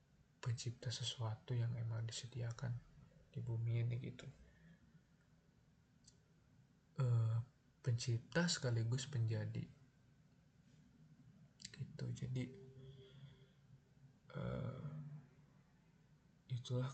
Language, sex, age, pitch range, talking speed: Indonesian, male, 20-39, 120-150 Hz, 60 wpm